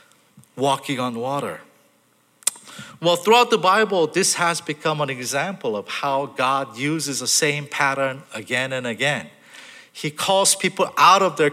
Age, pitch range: 50-69, 150-225 Hz